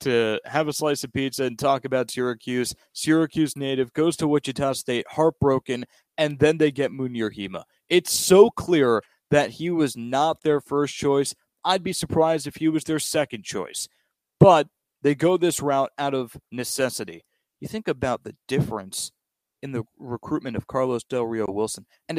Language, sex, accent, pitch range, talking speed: English, male, American, 130-160 Hz, 175 wpm